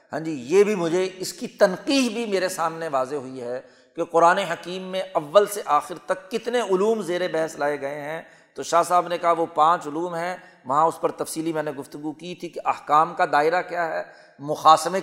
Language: Urdu